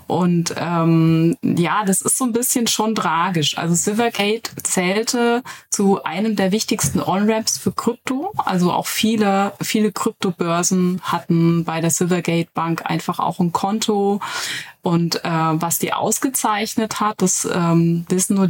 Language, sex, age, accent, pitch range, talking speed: German, female, 20-39, German, 165-195 Hz, 140 wpm